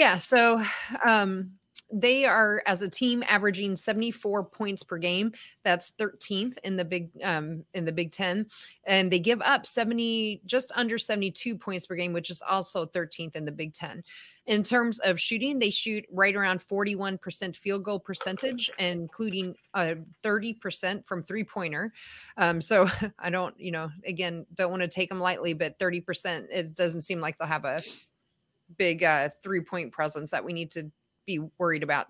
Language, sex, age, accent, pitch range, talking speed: English, female, 30-49, American, 170-210 Hz, 185 wpm